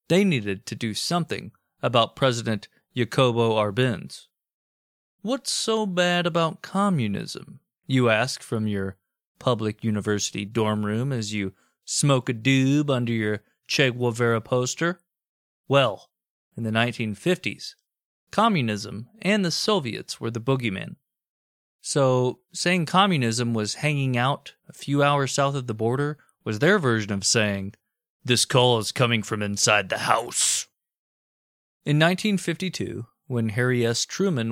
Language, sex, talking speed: English, male, 130 wpm